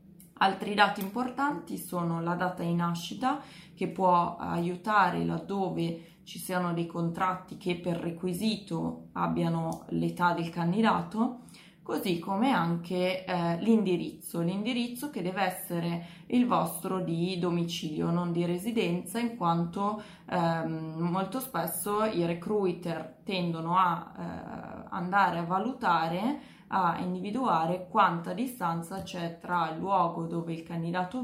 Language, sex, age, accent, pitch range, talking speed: Italian, female, 20-39, native, 170-200 Hz, 120 wpm